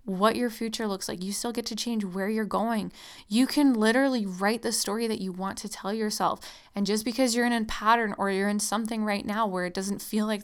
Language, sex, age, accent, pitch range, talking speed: English, female, 10-29, American, 200-235 Hz, 245 wpm